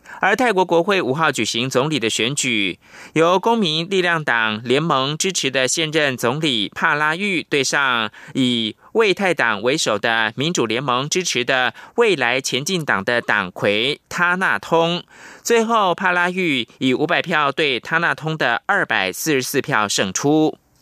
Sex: male